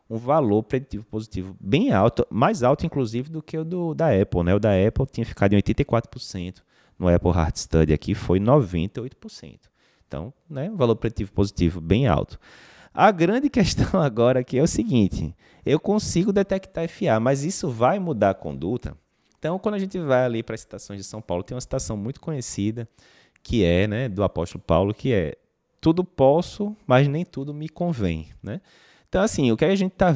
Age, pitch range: 20-39, 95-160 Hz